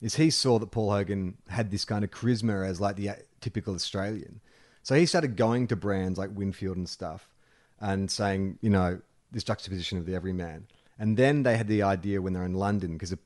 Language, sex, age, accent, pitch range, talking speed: English, male, 30-49, Australian, 95-115 Hz, 210 wpm